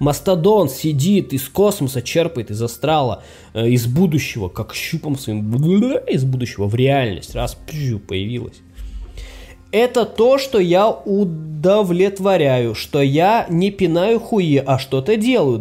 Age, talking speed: 20-39, 120 wpm